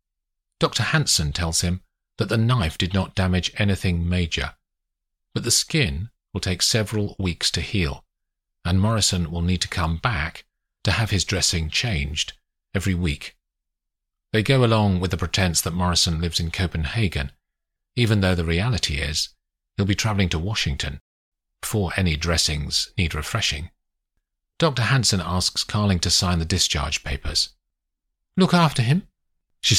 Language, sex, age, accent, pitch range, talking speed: English, male, 40-59, British, 75-105 Hz, 150 wpm